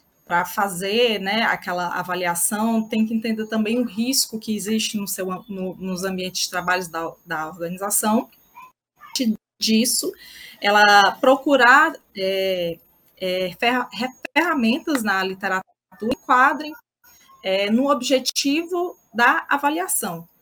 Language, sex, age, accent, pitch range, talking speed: Portuguese, female, 20-39, Brazilian, 190-255 Hz, 115 wpm